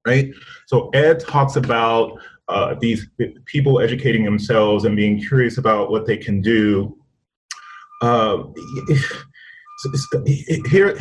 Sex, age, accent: male, 30-49, American